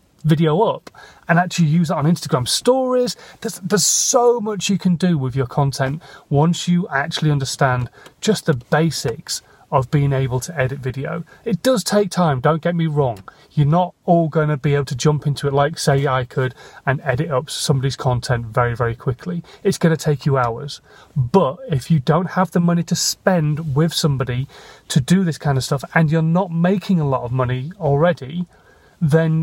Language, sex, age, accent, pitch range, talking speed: English, male, 30-49, British, 135-170 Hz, 190 wpm